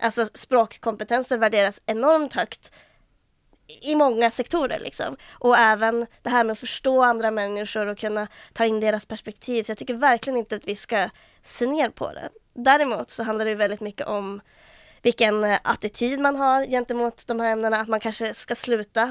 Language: Swedish